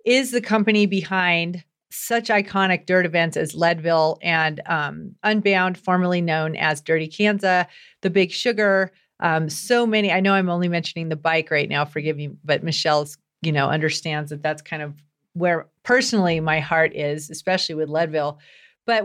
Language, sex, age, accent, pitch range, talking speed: English, female, 40-59, American, 165-205 Hz, 165 wpm